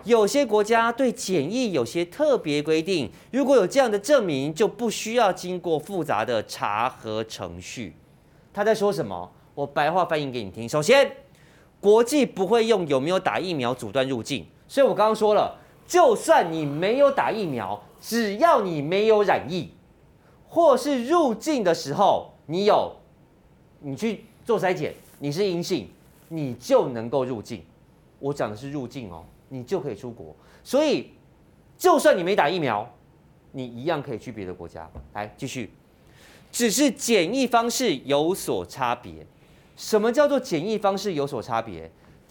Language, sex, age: Chinese, male, 30-49